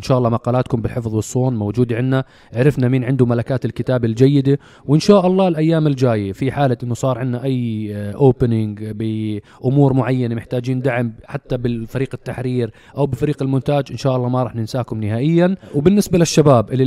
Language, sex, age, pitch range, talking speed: Arabic, male, 20-39, 125-150 Hz, 165 wpm